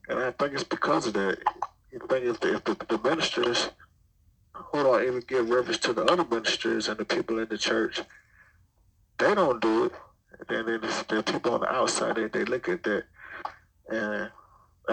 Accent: American